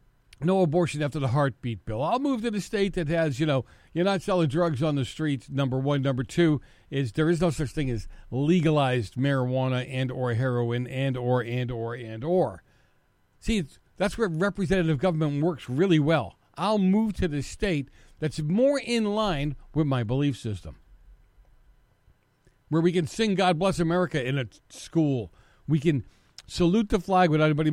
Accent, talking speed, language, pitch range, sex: American, 175 wpm, English, 120-185 Hz, male